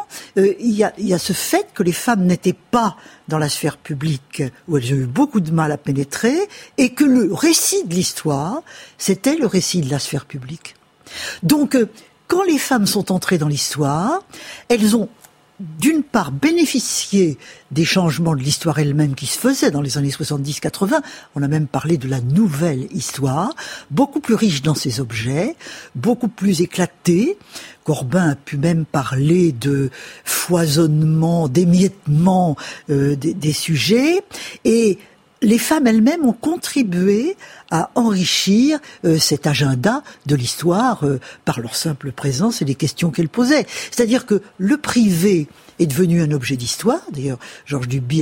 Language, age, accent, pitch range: French, 60-79, French, 150-240 Hz